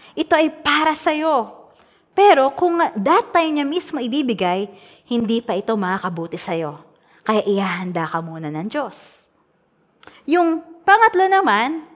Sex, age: female, 20-39